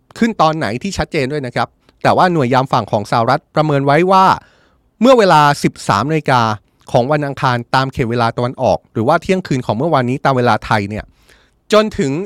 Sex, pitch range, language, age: male, 130-180 Hz, Thai, 20-39